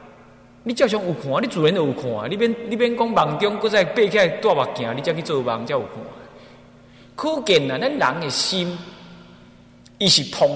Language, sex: Chinese, male